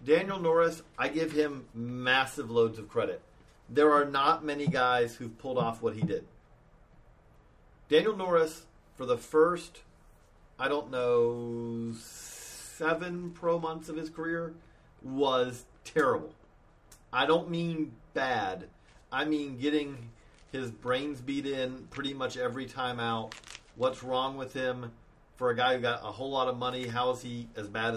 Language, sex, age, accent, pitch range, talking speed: English, male, 40-59, American, 120-155 Hz, 150 wpm